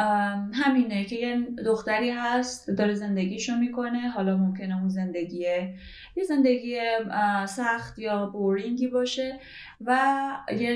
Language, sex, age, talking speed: Persian, female, 10-29, 110 wpm